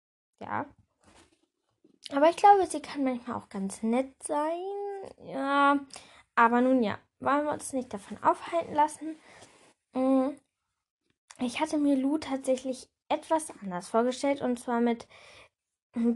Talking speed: 125 wpm